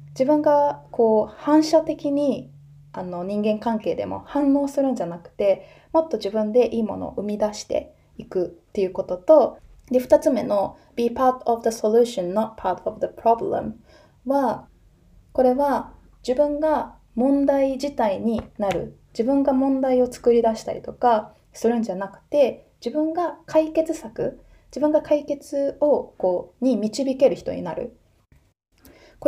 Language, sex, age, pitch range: Japanese, female, 20-39, 210-285 Hz